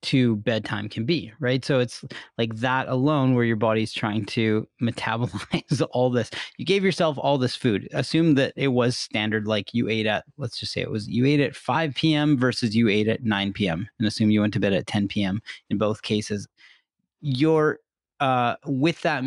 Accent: American